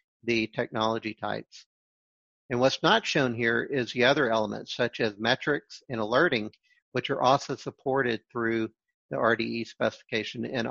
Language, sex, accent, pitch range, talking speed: English, male, American, 115-145 Hz, 145 wpm